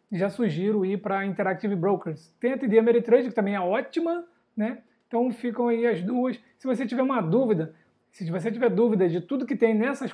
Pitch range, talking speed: 200-235 Hz, 200 wpm